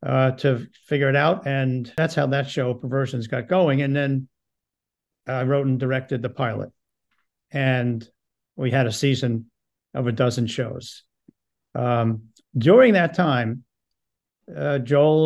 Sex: male